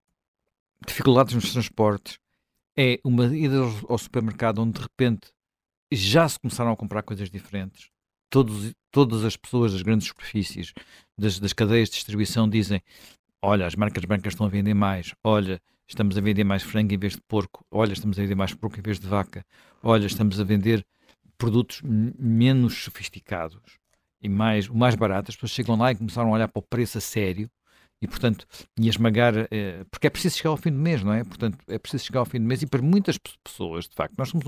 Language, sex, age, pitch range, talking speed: Portuguese, male, 50-69, 105-140 Hz, 195 wpm